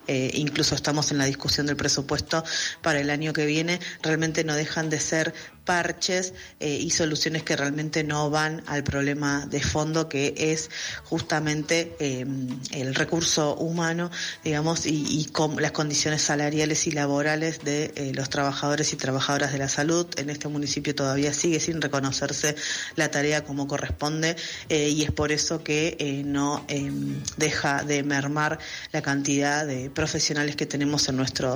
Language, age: Spanish, 30-49